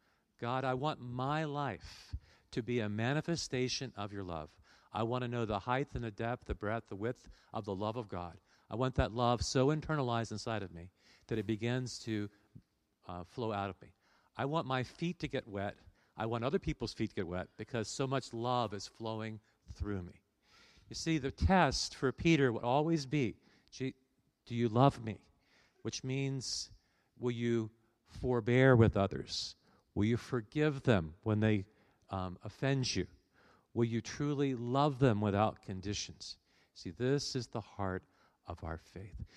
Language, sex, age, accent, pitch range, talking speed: English, male, 50-69, American, 105-130 Hz, 175 wpm